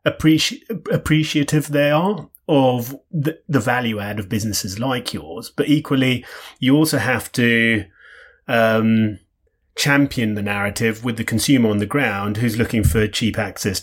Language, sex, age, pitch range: English, male, 30-49, 110-145 Hz